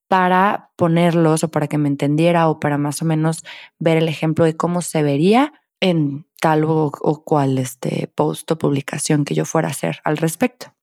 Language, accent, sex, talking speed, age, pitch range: Spanish, Mexican, female, 195 wpm, 20-39, 150-180 Hz